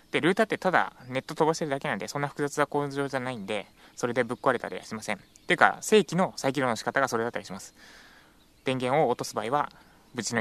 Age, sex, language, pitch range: 20-39, male, Japanese, 115-155 Hz